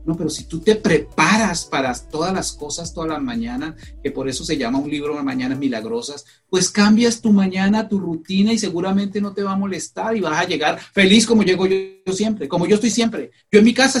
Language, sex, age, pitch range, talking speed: Spanish, male, 40-59, 160-220 Hz, 230 wpm